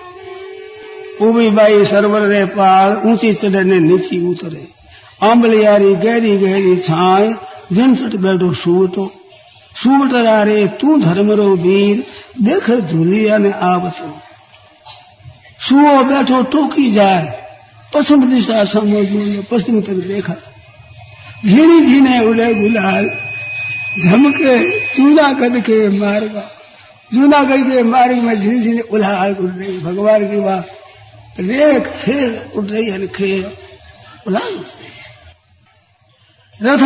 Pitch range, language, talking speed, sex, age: 190-235 Hz, Hindi, 75 wpm, male, 60-79